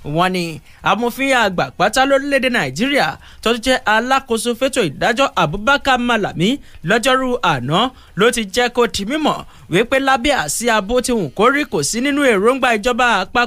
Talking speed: 145 wpm